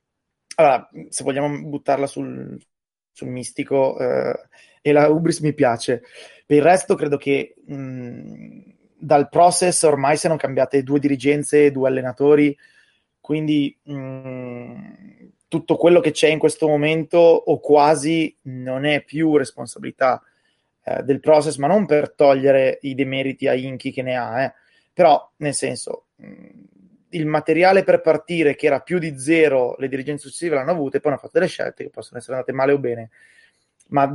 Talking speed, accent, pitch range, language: 160 wpm, native, 135-155 Hz, Italian